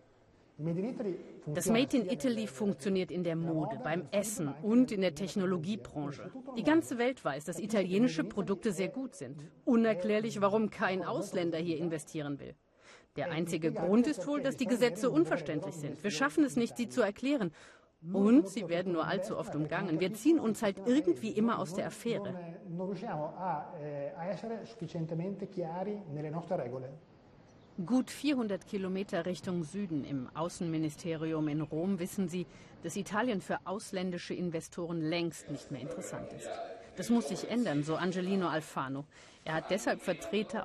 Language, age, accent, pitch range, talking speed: German, 40-59, German, 160-215 Hz, 140 wpm